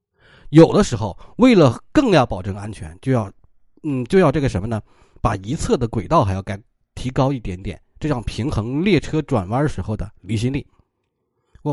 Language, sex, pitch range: Chinese, male, 105-170 Hz